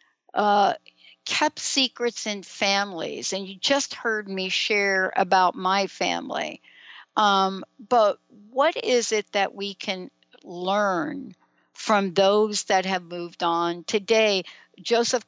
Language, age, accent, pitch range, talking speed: English, 60-79, American, 185-230 Hz, 120 wpm